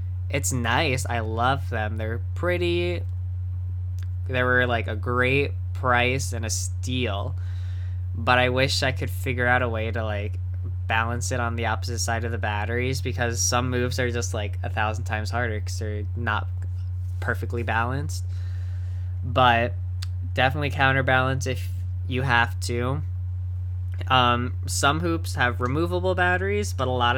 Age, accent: 10-29, American